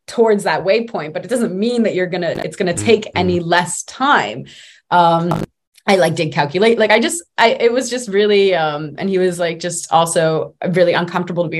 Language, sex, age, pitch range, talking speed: English, female, 20-39, 160-185 Hz, 205 wpm